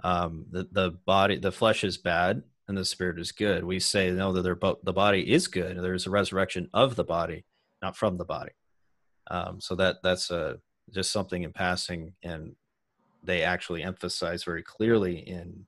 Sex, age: male, 30-49